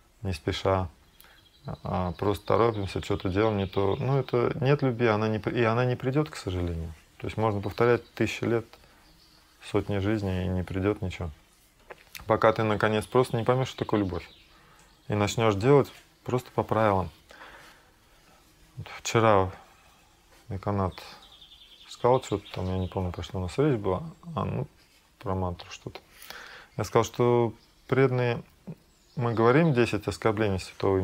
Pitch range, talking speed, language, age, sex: 95-120 Hz, 145 wpm, Russian, 20-39, male